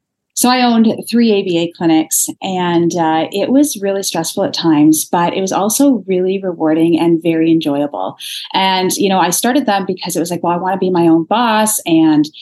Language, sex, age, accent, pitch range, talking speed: English, female, 30-49, American, 170-240 Hz, 205 wpm